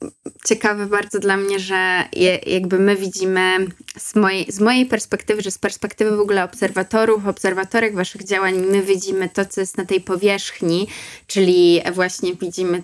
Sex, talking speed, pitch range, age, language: female, 150 wpm, 190-220 Hz, 20-39, Polish